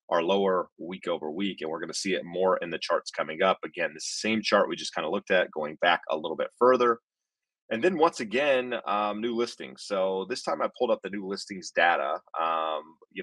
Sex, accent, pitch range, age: male, American, 85-120 Hz, 30-49